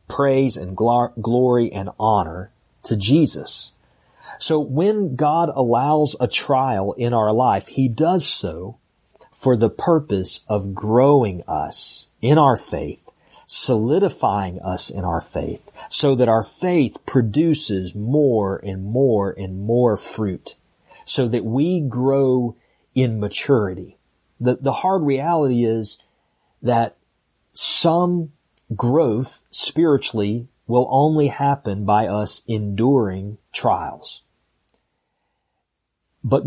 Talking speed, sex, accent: 110 wpm, male, American